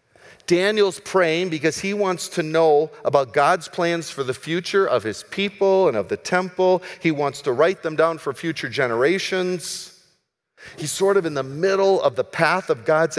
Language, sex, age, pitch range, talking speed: English, male, 50-69, 130-185 Hz, 180 wpm